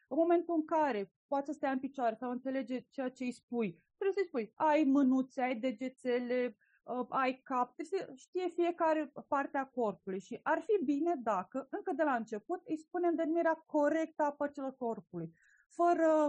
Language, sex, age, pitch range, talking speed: Romanian, female, 30-49, 240-300 Hz, 175 wpm